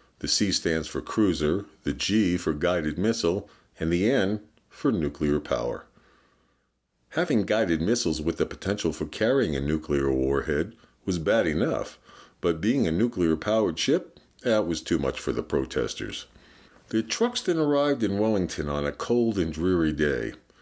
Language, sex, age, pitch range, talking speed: English, male, 50-69, 80-110 Hz, 155 wpm